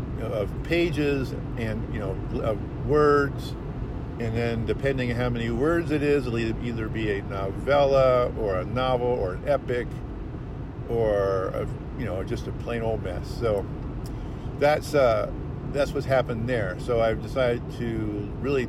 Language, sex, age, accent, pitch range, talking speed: English, male, 50-69, American, 110-130 Hz, 155 wpm